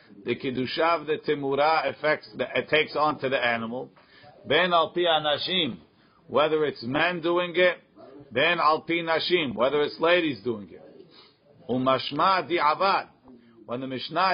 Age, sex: 50-69, male